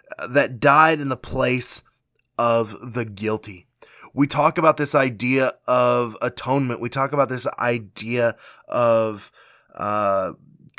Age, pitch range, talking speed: 20-39, 125-160 Hz, 120 wpm